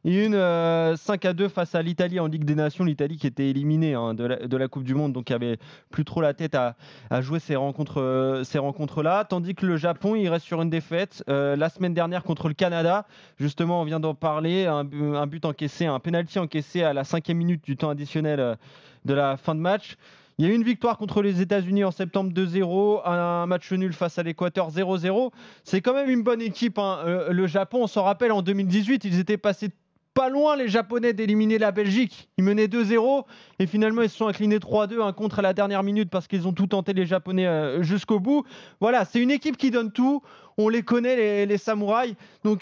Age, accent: 20-39, French